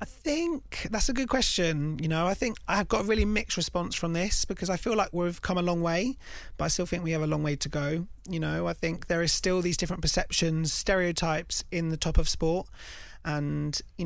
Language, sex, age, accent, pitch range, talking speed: English, male, 30-49, British, 160-190 Hz, 240 wpm